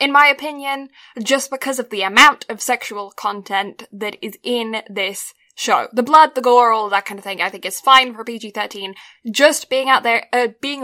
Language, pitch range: English, 205-260 Hz